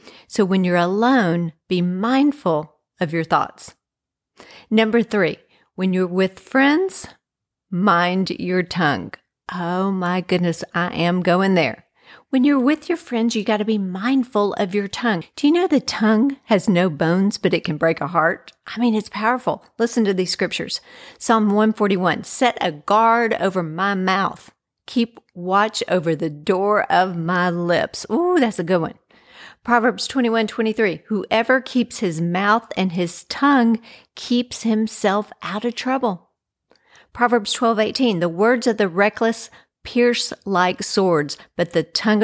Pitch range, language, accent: 180-230 Hz, English, American